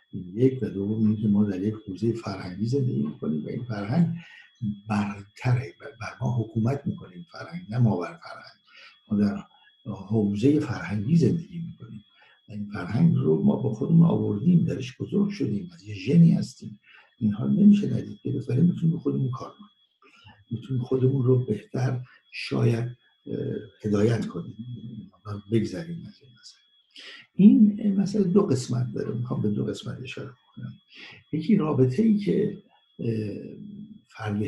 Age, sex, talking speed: 60-79, male, 135 wpm